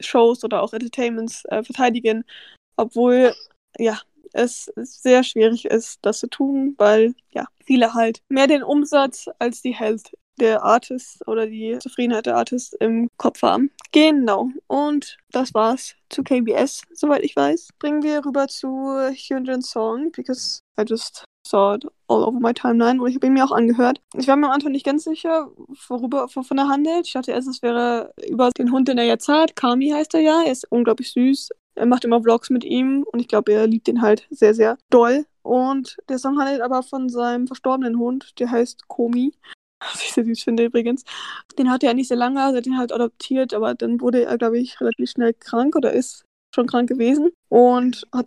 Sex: female